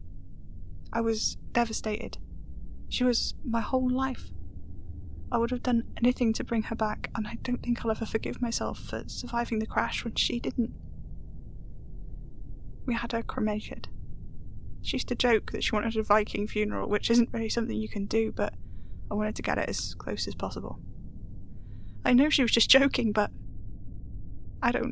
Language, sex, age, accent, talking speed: English, female, 10-29, British, 175 wpm